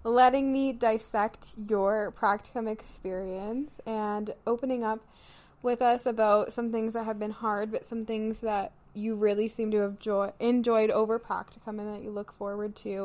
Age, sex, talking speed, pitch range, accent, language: 20-39, female, 170 wpm, 205-235 Hz, American, English